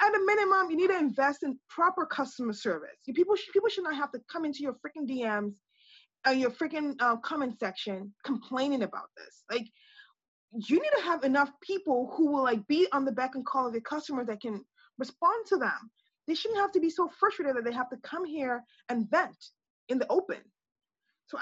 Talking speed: 210 wpm